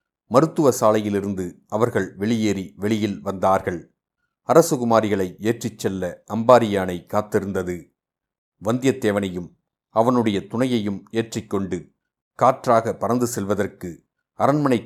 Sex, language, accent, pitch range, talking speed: male, Tamil, native, 100-120 Hz, 75 wpm